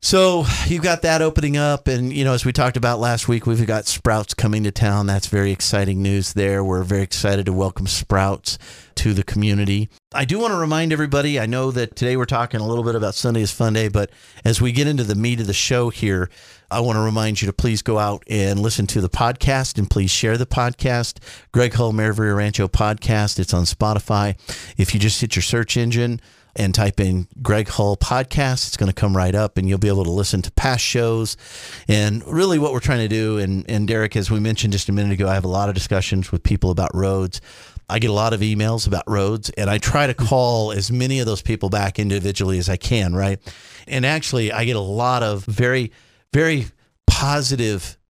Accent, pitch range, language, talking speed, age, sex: American, 100-120 Hz, English, 225 wpm, 50-69, male